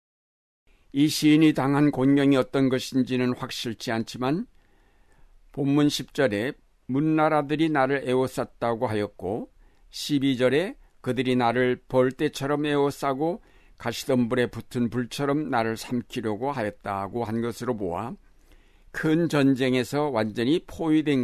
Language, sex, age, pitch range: Korean, male, 60-79, 120-145 Hz